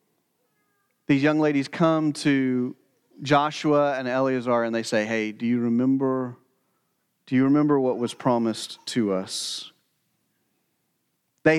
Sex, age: male, 40-59